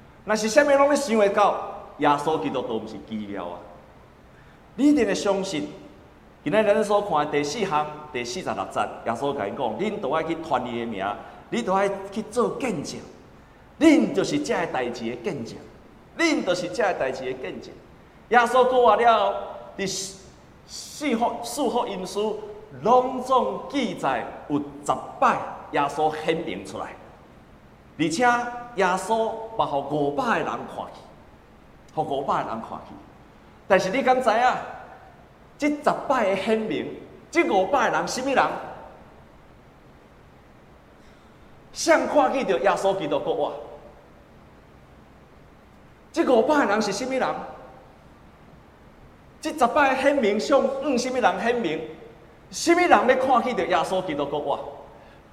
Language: Chinese